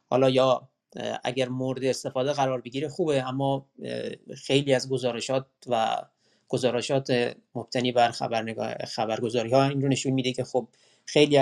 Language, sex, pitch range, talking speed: Persian, male, 125-145 Hz, 135 wpm